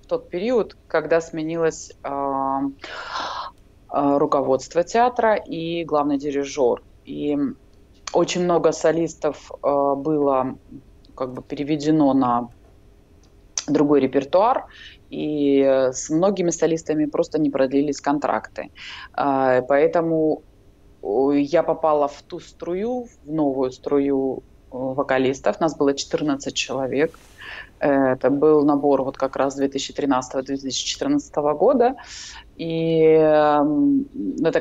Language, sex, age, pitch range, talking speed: Russian, female, 20-39, 130-160 Hz, 95 wpm